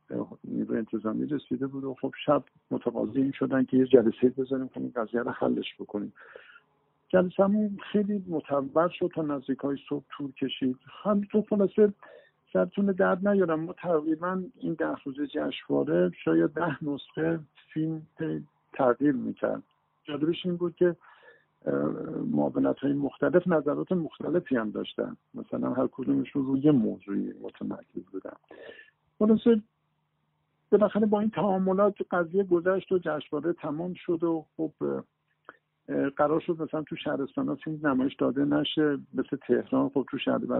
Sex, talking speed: male, 130 wpm